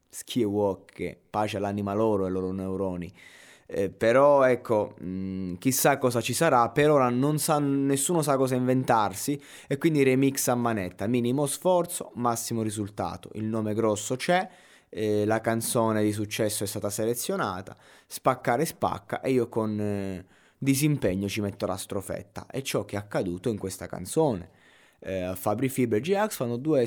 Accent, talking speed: native, 160 wpm